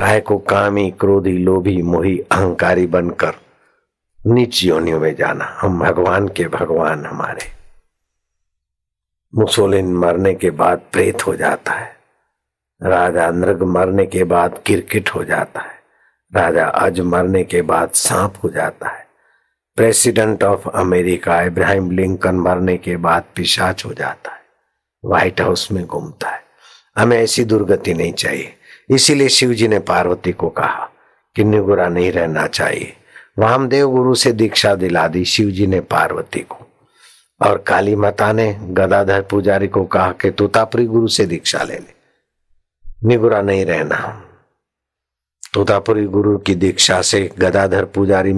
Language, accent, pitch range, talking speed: Hindi, native, 90-105 Hz, 135 wpm